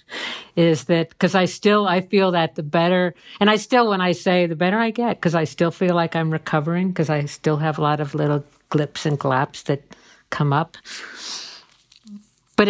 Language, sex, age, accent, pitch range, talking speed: English, female, 50-69, American, 150-185 Hz, 200 wpm